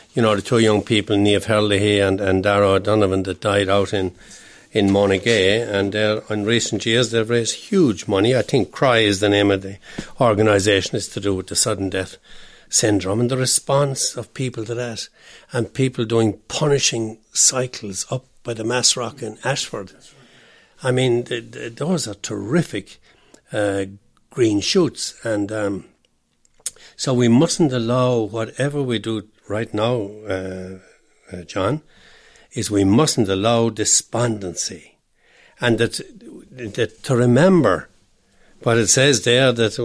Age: 60-79